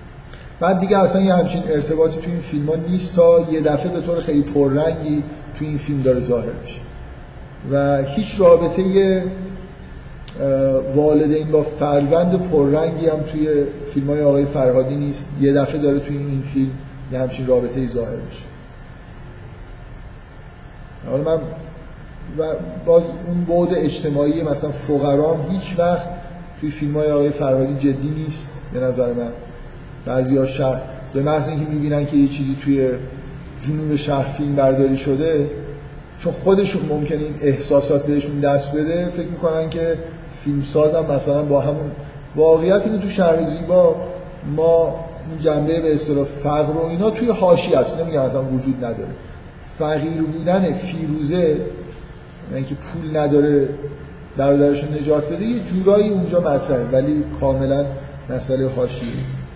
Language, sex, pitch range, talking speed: Persian, male, 135-165 Hz, 130 wpm